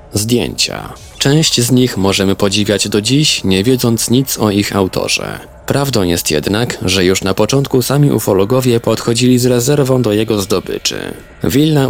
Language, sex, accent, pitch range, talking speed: Polish, male, native, 95-120 Hz, 150 wpm